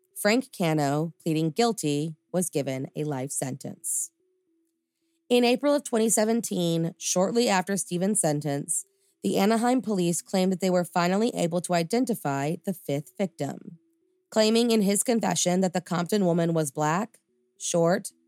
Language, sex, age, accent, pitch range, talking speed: English, female, 20-39, American, 160-200 Hz, 140 wpm